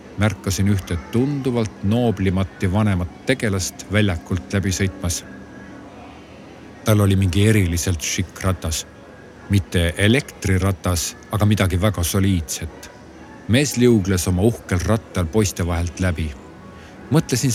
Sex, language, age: male, Czech, 50-69